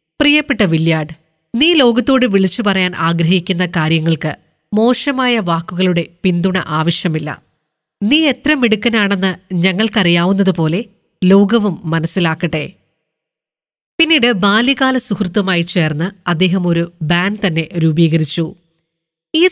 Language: Malayalam